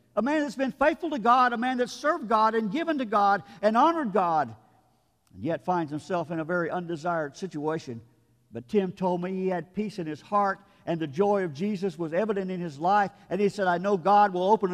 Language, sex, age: English, male, 50-69